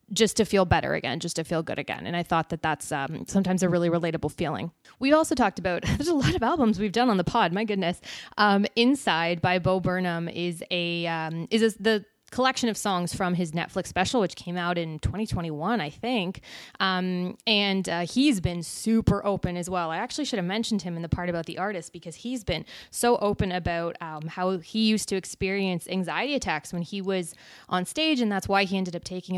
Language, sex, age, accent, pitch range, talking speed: English, female, 20-39, American, 175-225 Hz, 220 wpm